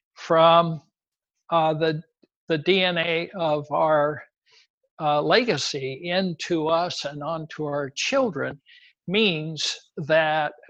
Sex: male